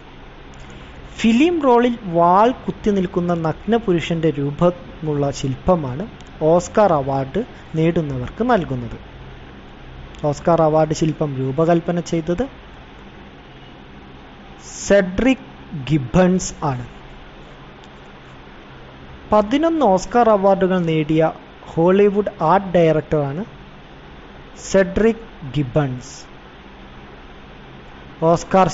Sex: male